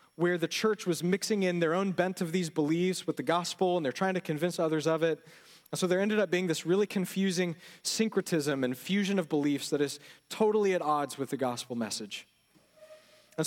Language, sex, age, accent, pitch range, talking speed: English, male, 30-49, American, 180-225 Hz, 210 wpm